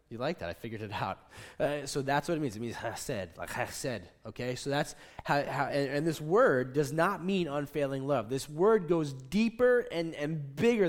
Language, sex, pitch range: English, male, 120-190 Hz